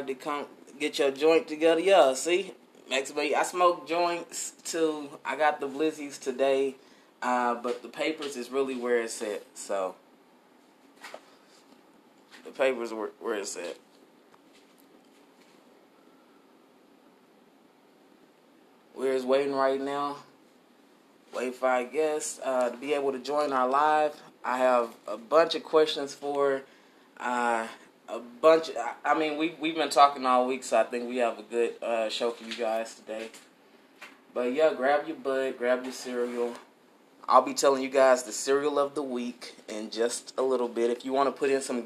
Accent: American